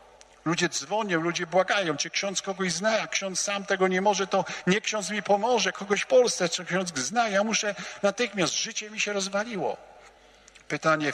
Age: 50-69